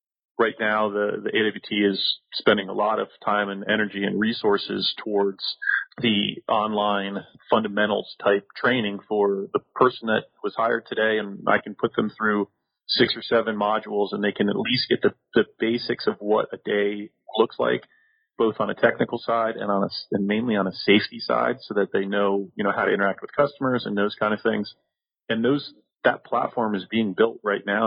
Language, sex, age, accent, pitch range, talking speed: English, male, 30-49, American, 100-110 Hz, 200 wpm